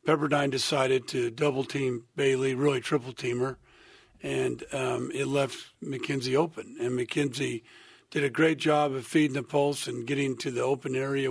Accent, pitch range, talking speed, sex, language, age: American, 130-155 Hz, 160 wpm, male, English, 50-69